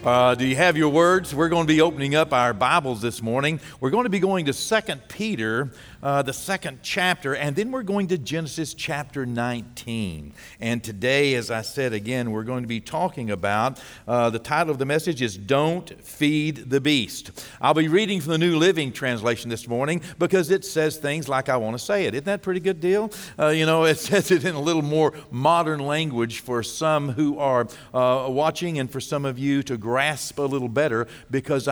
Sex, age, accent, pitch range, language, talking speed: male, 50-69, American, 125-165 Hz, English, 220 wpm